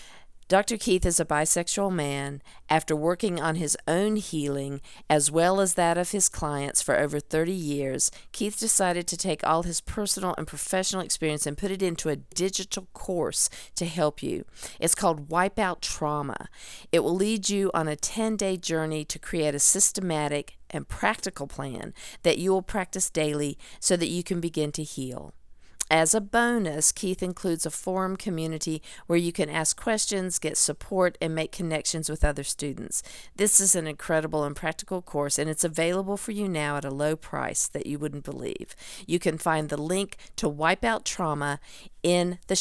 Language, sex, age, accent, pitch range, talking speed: English, female, 50-69, American, 150-190 Hz, 180 wpm